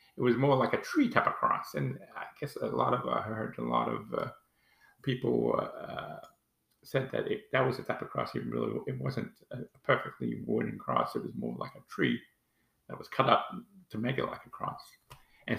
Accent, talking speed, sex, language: American, 225 wpm, male, English